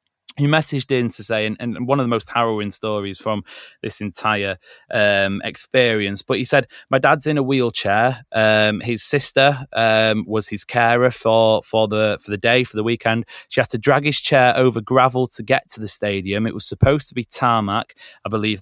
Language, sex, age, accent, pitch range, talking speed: English, male, 20-39, British, 105-130 Hz, 205 wpm